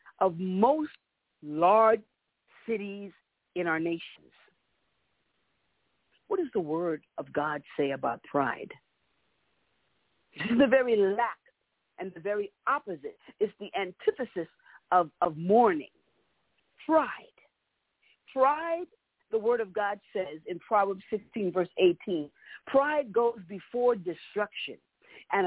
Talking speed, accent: 115 wpm, American